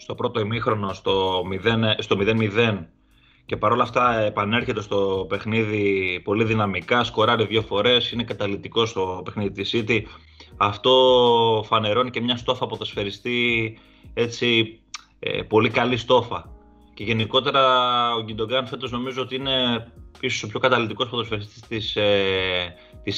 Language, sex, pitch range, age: Greek, male, 100-120 Hz, 30-49